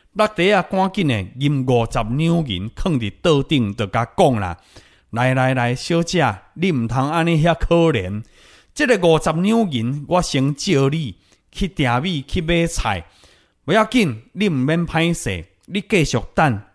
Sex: male